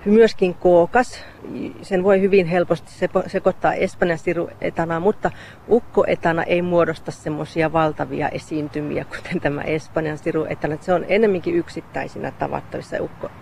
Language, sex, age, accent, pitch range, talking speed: Finnish, female, 40-59, native, 160-190 Hz, 125 wpm